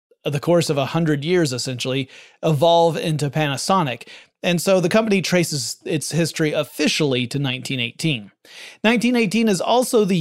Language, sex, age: English, male, 30-49